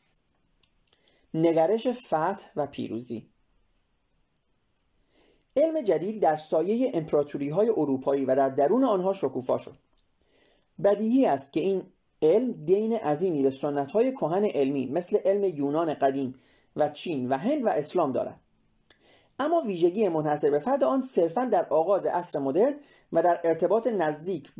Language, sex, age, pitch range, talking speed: Persian, male, 30-49, 145-215 Hz, 130 wpm